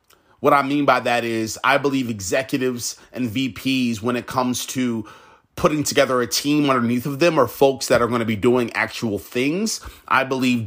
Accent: American